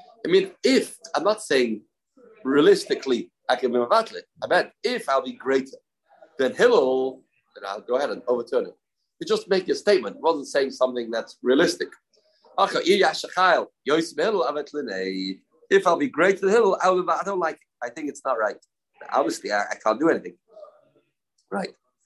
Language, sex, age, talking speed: English, male, 40-59, 155 wpm